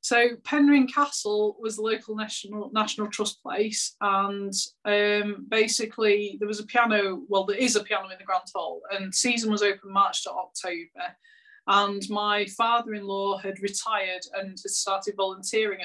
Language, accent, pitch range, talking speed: English, British, 195-235 Hz, 160 wpm